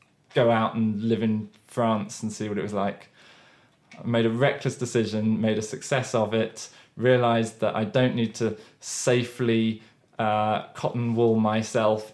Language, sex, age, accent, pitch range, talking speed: English, male, 20-39, British, 110-125 Hz, 165 wpm